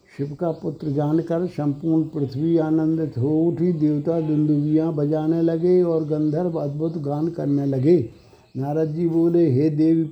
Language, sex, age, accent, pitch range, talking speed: Hindi, male, 60-79, native, 145-170 Hz, 140 wpm